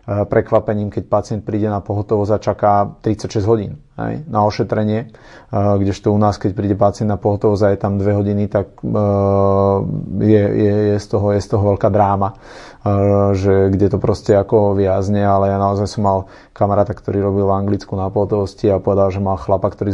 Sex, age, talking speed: male, 30-49, 175 wpm